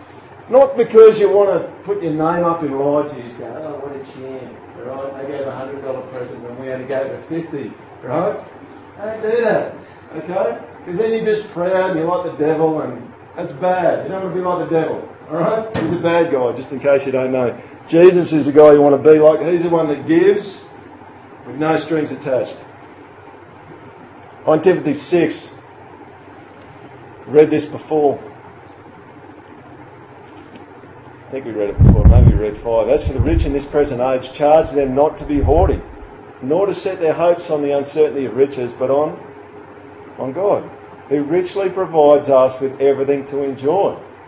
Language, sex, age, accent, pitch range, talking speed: English, male, 40-59, Australian, 135-185 Hz, 190 wpm